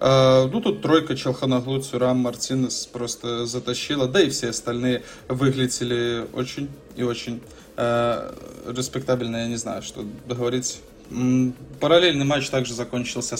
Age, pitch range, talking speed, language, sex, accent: 20-39, 120-130 Hz, 120 wpm, Russian, male, native